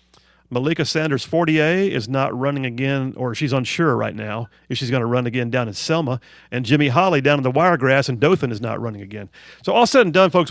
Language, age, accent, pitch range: English, 40-59, American, 125-175 Hz